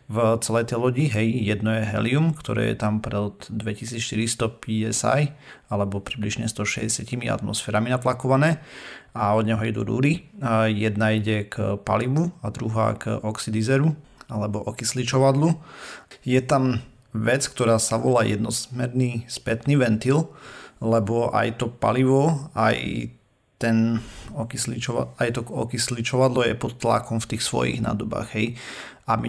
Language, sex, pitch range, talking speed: Slovak, male, 110-125 Hz, 125 wpm